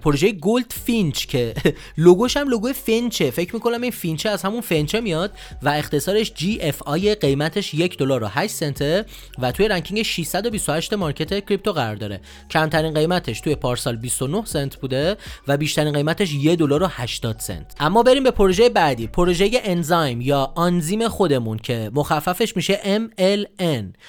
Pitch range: 135-190 Hz